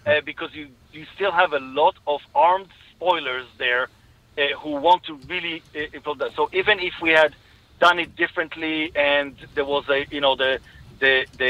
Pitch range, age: 130-160 Hz, 40-59